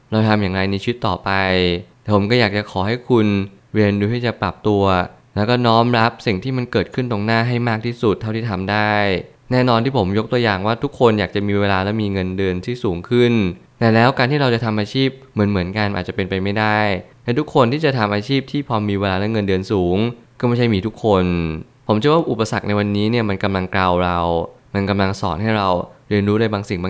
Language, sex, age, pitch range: Thai, male, 20-39, 100-120 Hz